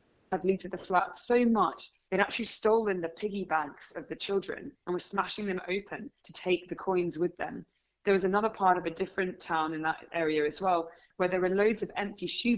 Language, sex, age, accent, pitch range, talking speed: English, female, 20-39, British, 170-200 Hz, 215 wpm